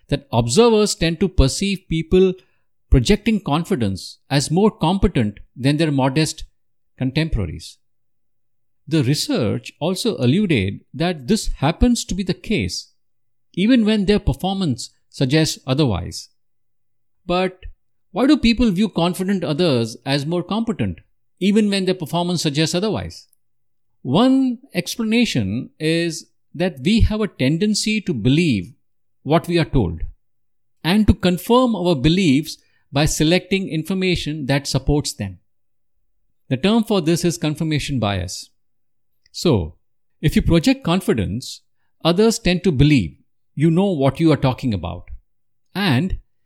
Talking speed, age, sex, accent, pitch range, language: 125 wpm, 50-69, male, Indian, 120-190 Hz, English